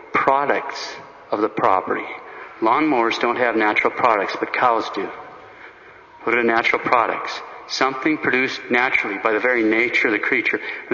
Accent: American